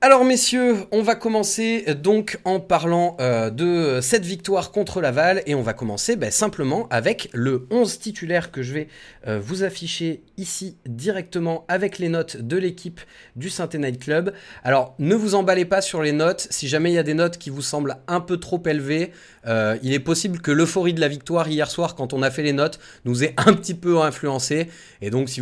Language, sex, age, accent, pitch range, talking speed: French, male, 30-49, French, 125-180 Hz, 210 wpm